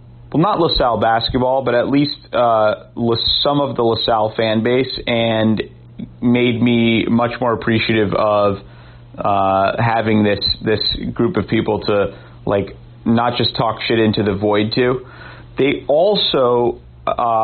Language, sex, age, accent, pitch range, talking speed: English, male, 30-49, American, 105-125 Hz, 140 wpm